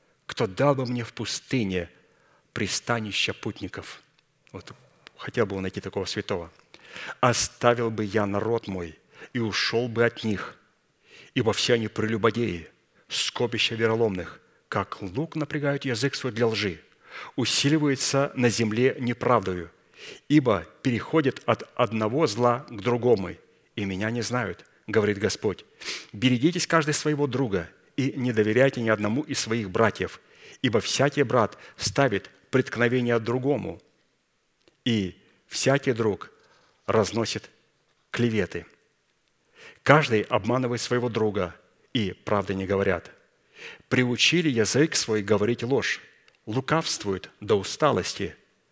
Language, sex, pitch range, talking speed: Russian, male, 105-130 Hz, 115 wpm